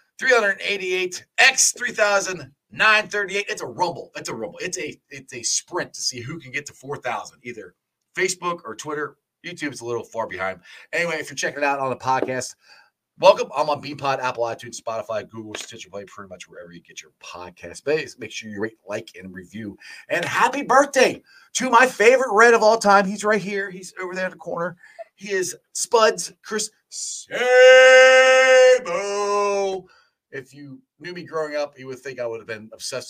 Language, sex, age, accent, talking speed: English, male, 30-49, American, 185 wpm